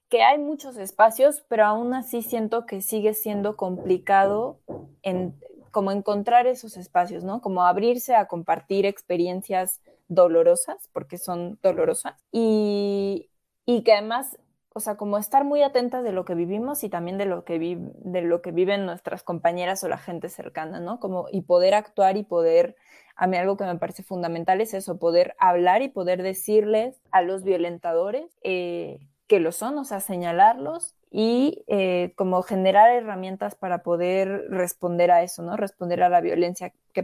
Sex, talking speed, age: female, 170 wpm, 20-39